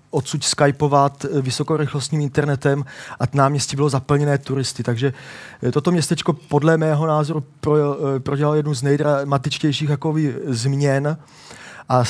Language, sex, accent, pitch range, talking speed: Czech, male, native, 135-155 Hz, 110 wpm